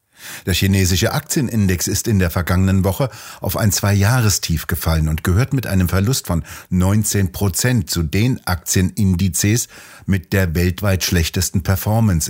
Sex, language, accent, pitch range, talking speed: male, German, German, 90-110 Hz, 130 wpm